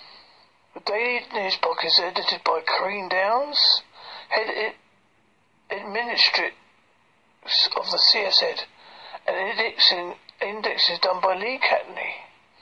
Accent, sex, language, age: British, male, English, 40-59